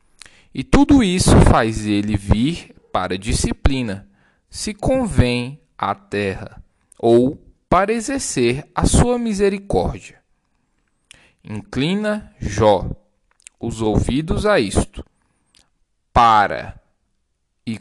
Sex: male